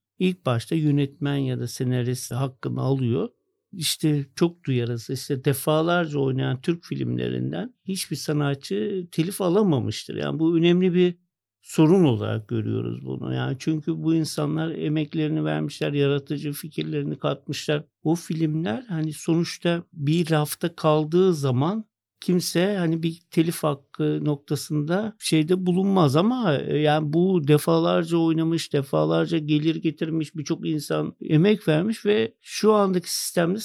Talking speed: 125 wpm